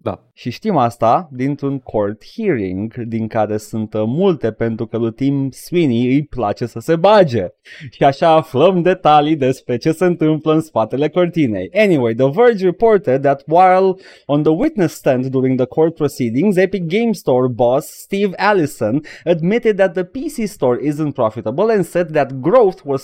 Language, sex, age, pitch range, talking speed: Romanian, male, 20-39, 120-175 Hz, 165 wpm